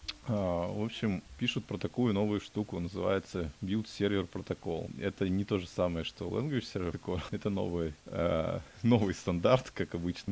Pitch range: 85-105 Hz